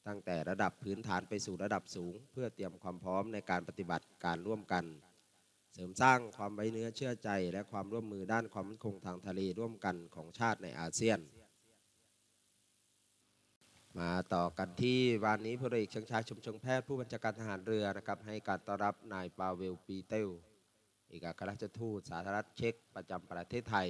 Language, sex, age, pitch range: Thai, male, 20-39, 90-110 Hz